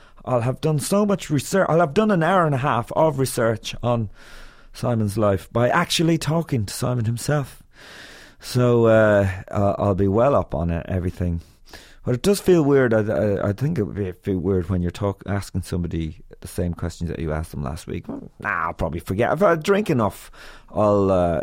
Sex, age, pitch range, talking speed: male, 30-49, 100-145 Hz, 190 wpm